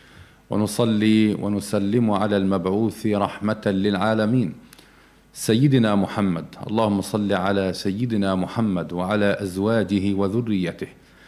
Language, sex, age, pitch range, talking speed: Arabic, male, 40-59, 100-115 Hz, 85 wpm